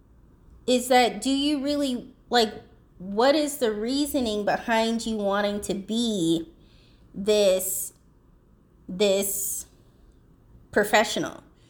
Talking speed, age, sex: 90 wpm, 20-39, female